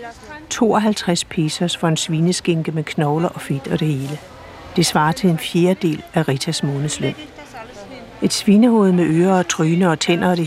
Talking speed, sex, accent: 170 wpm, female, native